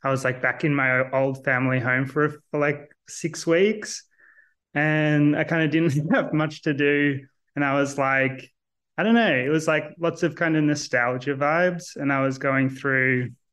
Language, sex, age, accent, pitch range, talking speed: English, male, 20-39, Australian, 130-145 Hz, 190 wpm